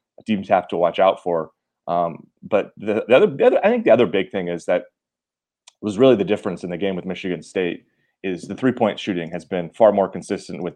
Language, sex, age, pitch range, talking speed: English, male, 30-49, 85-110 Hz, 225 wpm